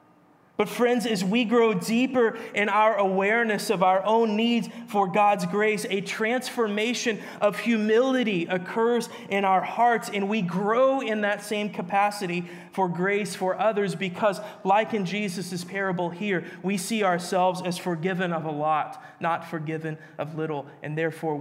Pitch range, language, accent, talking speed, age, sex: 165-210 Hz, English, American, 155 wpm, 20-39, male